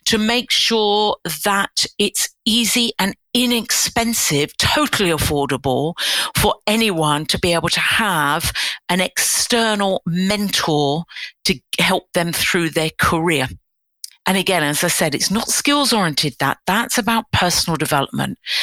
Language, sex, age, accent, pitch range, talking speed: English, female, 50-69, British, 170-210 Hz, 130 wpm